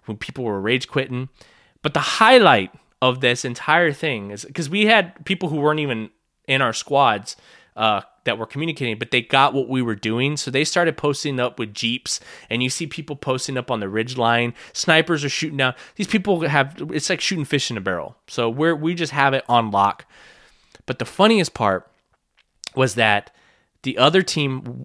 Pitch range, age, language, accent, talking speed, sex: 115-160 Hz, 20-39, English, American, 200 wpm, male